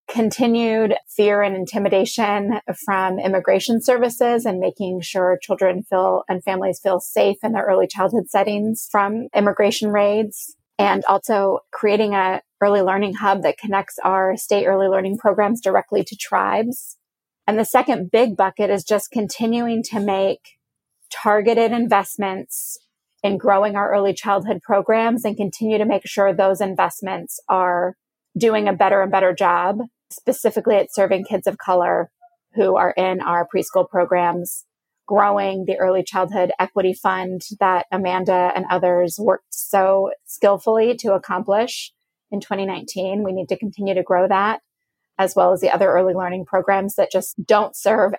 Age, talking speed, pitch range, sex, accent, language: 30-49, 150 wpm, 185-215 Hz, female, American, English